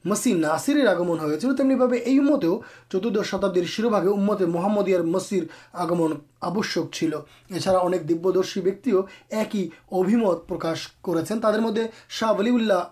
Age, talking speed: 30-49, 125 wpm